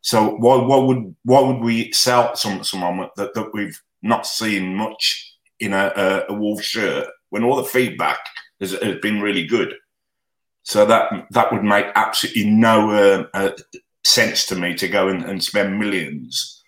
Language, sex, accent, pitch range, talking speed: English, male, British, 95-115 Hz, 170 wpm